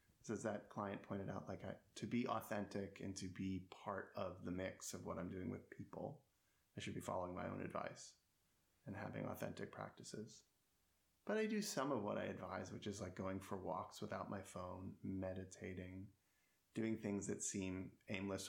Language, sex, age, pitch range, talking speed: English, male, 30-49, 95-115 Hz, 190 wpm